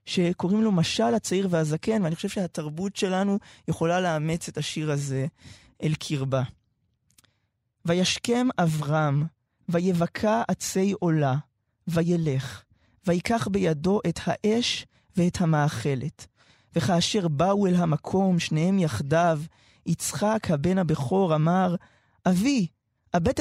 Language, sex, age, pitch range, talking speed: Hebrew, male, 20-39, 155-200 Hz, 105 wpm